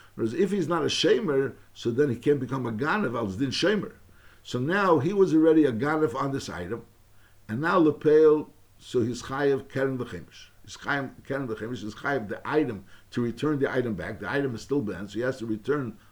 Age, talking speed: 60-79, 195 wpm